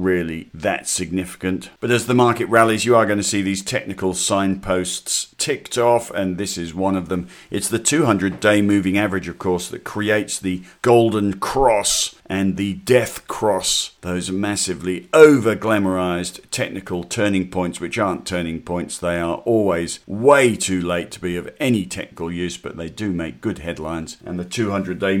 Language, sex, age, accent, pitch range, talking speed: English, male, 50-69, British, 90-110 Hz, 170 wpm